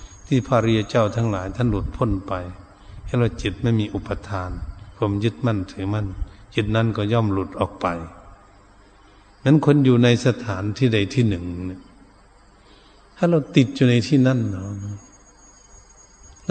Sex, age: male, 70-89